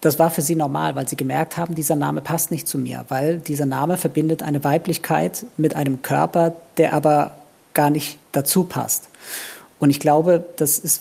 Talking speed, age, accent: 190 wpm, 50-69, German